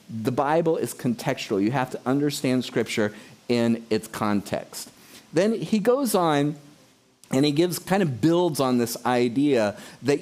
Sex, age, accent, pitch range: male, 40-59, American, 120-160 Hz